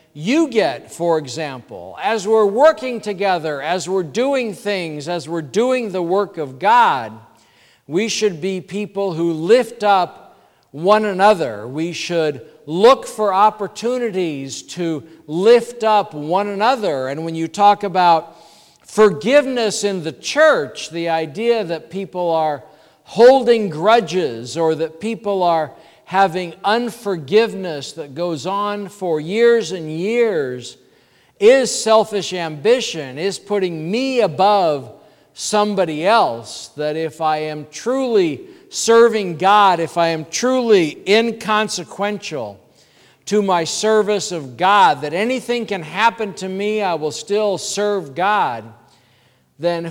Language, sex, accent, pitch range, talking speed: English, male, American, 165-215 Hz, 125 wpm